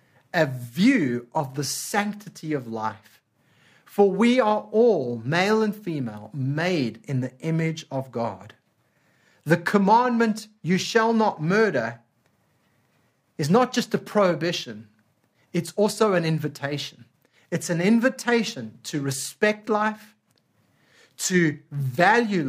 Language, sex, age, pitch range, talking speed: English, male, 30-49, 125-205 Hz, 115 wpm